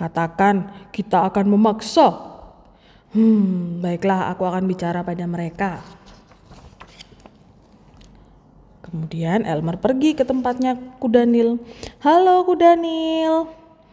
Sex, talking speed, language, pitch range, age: female, 80 wpm, Indonesian, 190-255 Hz, 20-39